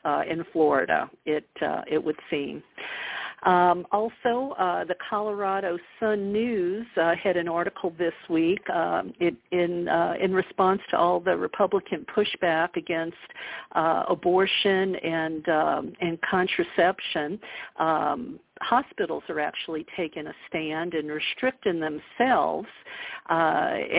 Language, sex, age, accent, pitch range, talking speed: English, female, 50-69, American, 165-200 Hz, 125 wpm